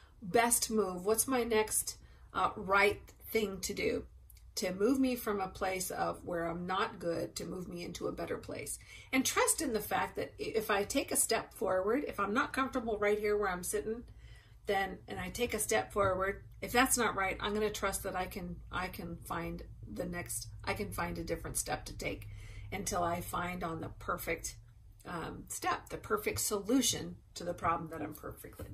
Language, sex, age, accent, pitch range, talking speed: English, female, 40-59, American, 165-210 Hz, 205 wpm